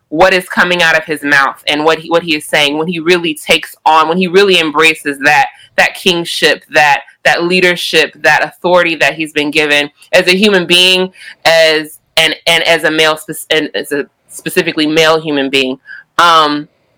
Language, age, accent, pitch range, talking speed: English, 20-39, American, 160-220 Hz, 185 wpm